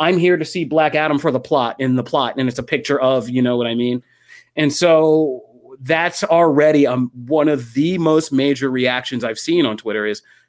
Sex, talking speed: male, 215 wpm